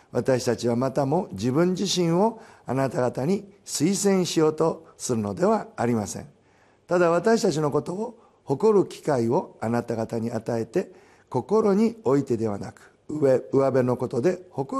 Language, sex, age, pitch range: Japanese, male, 50-69, 115-195 Hz